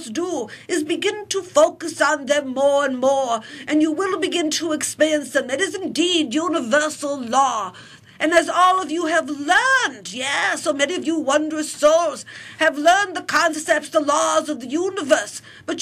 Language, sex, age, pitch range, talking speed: English, female, 50-69, 290-345 Hz, 175 wpm